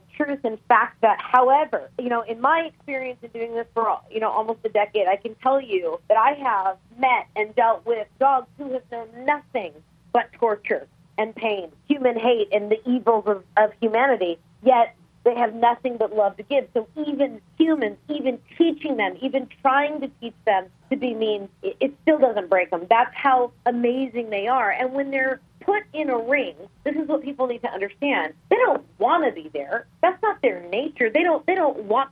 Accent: American